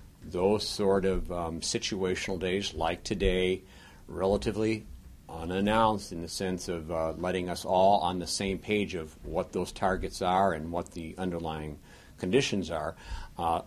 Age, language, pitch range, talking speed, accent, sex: 60-79, English, 85-105 Hz, 150 wpm, American, male